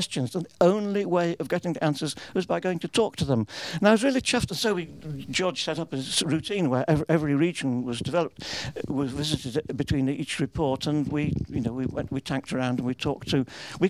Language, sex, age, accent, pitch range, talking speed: English, male, 50-69, British, 130-175 Hz, 230 wpm